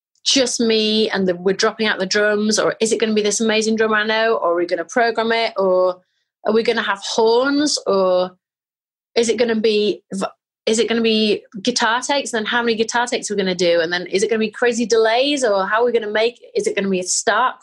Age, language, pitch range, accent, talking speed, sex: 30-49, English, 185-230 Hz, British, 245 wpm, female